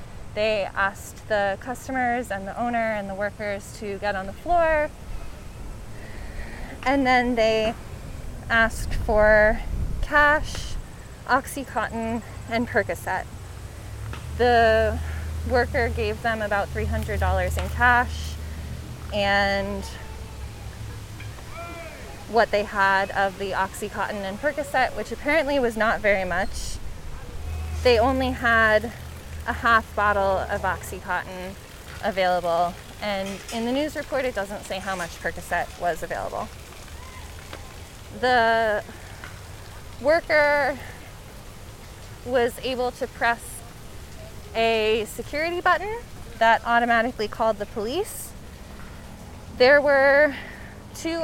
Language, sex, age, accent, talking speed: English, female, 20-39, American, 100 wpm